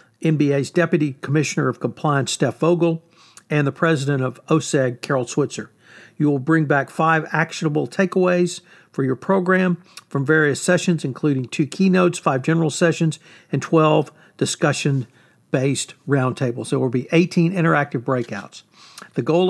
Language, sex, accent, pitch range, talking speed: English, male, American, 140-170 Hz, 140 wpm